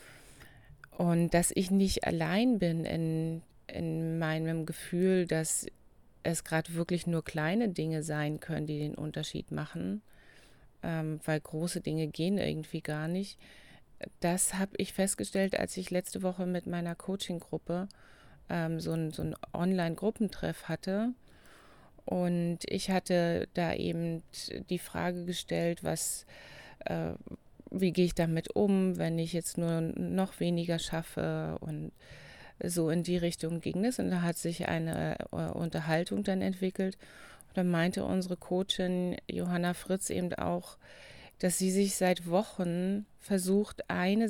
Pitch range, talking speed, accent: 160-185 Hz, 135 wpm, German